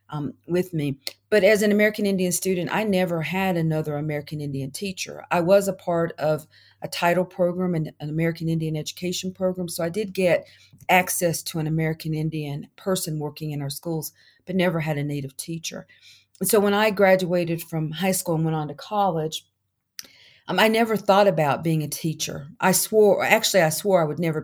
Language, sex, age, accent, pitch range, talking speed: English, female, 40-59, American, 150-185 Hz, 195 wpm